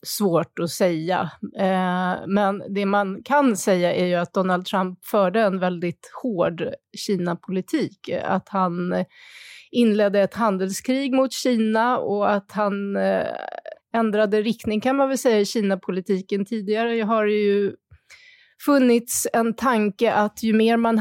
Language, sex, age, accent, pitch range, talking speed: Swedish, female, 30-49, native, 185-220 Hz, 135 wpm